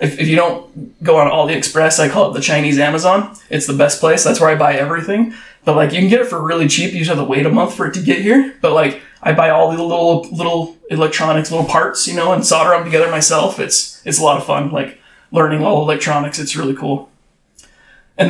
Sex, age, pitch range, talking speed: male, 20-39, 145-160 Hz, 245 wpm